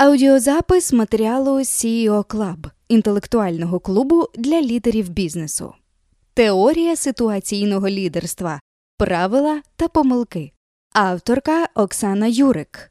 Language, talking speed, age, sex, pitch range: Ukrainian, 85 wpm, 20-39, female, 190-265 Hz